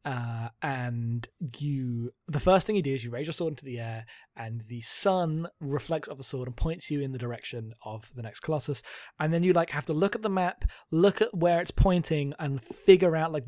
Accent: British